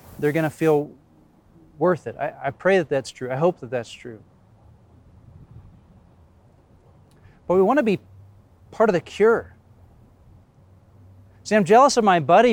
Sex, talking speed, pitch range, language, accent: male, 155 wpm, 100-160 Hz, English, American